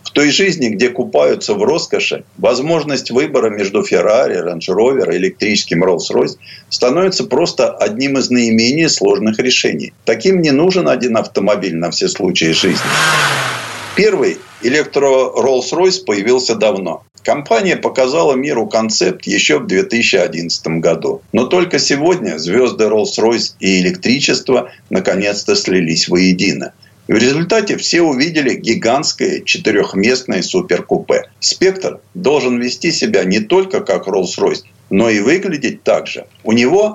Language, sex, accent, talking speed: Russian, male, native, 125 wpm